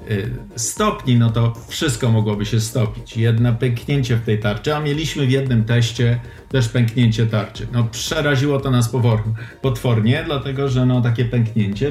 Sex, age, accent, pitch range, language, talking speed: male, 50-69, native, 115-140 Hz, Polish, 140 wpm